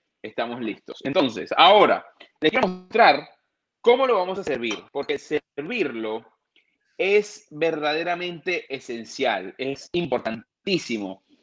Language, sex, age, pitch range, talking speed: Spanish, male, 30-49, 130-210 Hz, 100 wpm